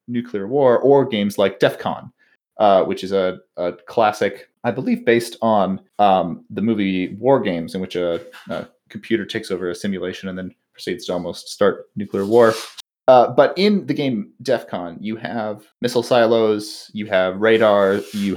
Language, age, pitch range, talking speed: English, 30-49, 95-120 Hz, 170 wpm